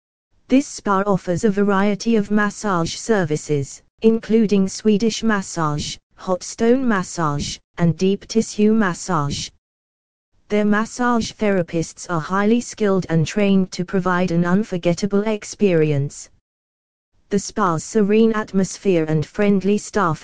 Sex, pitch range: female, 170-210 Hz